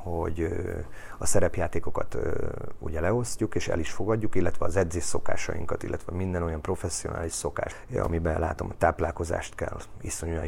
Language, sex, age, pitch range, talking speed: Hungarian, male, 30-49, 85-100 Hz, 135 wpm